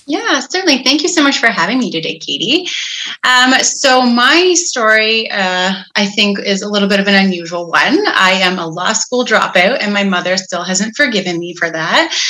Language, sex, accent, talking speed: English, female, American, 200 wpm